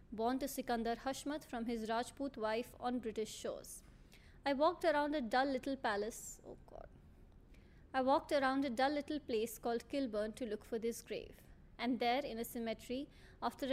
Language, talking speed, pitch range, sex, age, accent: English, 175 wpm, 225-260 Hz, female, 20-39, Indian